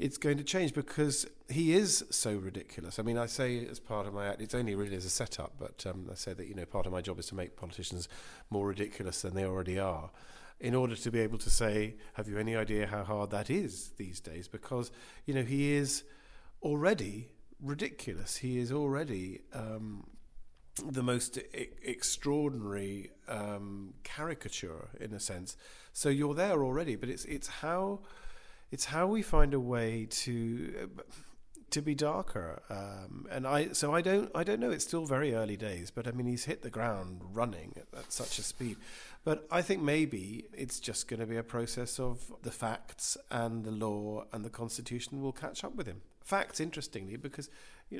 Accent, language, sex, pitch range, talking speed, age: British, English, male, 105-145 Hz, 195 wpm, 40-59